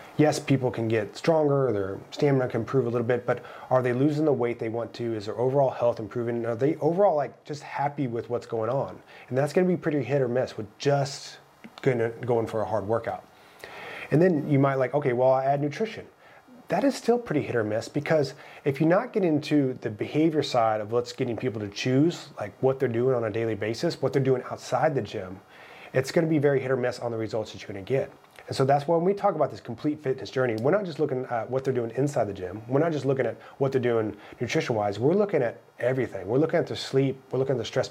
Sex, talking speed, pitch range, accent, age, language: male, 255 wpm, 120-150 Hz, American, 30-49, English